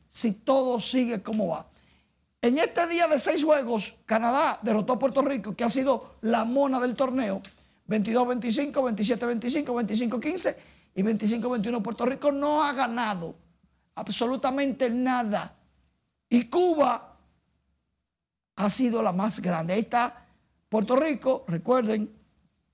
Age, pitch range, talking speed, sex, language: 50-69, 215-265 Hz, 125 wpm, male, Spanish